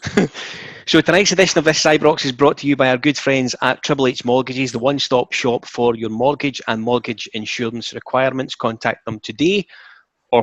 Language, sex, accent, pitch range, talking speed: English, male, British, 110-135 Hz, 185 wpm